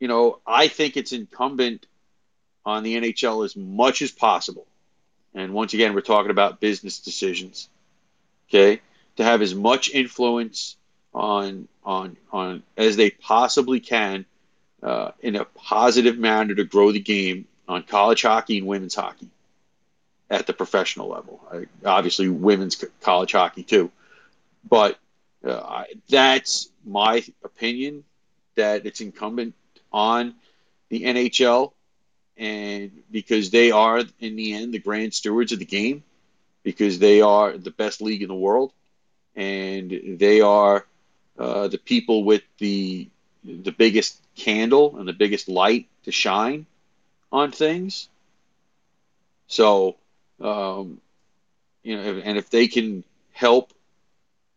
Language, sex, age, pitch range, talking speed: English, male, 40-59, 100-125 Hz, 130 wpm